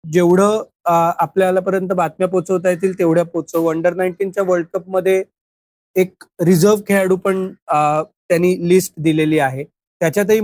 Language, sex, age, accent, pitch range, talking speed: Marathi, male, 30-49, native, 170-205 Hz, 90 wpm